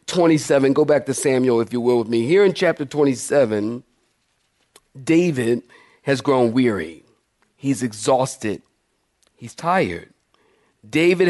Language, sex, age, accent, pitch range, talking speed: English, male, 50-69, American, 130-180 Hz, 120 wpm